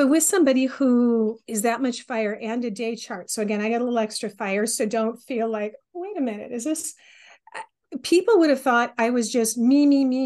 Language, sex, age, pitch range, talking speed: English, female, 40-59, 220-270 Hz, 230 wpm